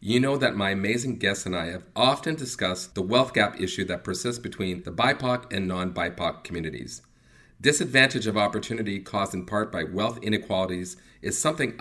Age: 40-59